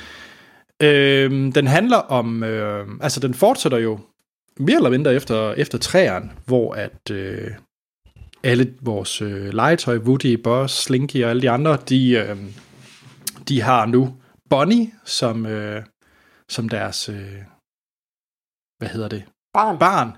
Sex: male